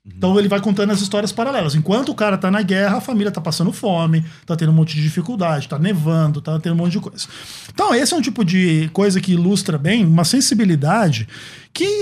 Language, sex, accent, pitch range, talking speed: Portuguese, male, Brazilian, 165-225 Hz, 225 wpm